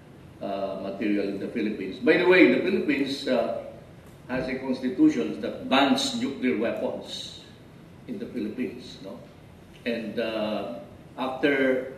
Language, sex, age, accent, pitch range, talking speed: English, male, 50-69, Filipino, 115-165 Hz, 120 wpm